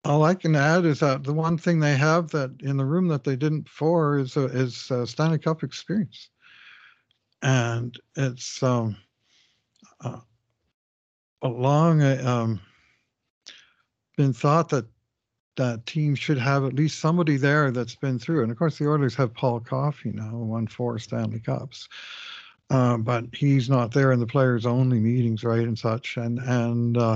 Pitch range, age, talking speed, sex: 115-140 Hz, 60-79, 170 wpm, male